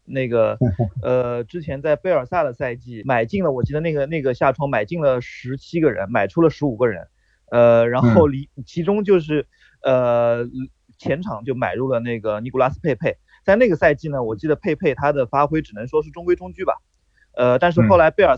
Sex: male